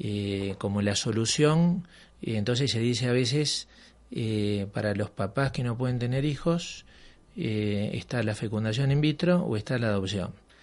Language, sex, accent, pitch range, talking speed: Spanish, male, Argentinian, 105-140 Hz, 165 wpm